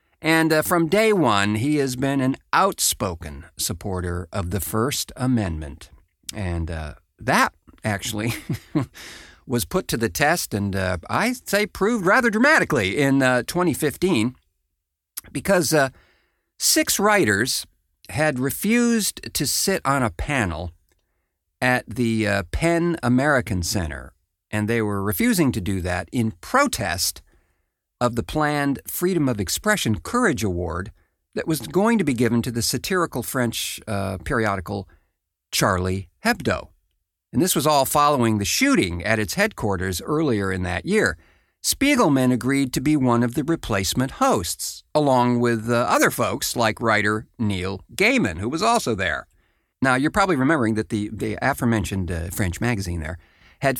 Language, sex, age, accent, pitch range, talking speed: English, male, 50-69, American, 90-140 Hz, 145 wpm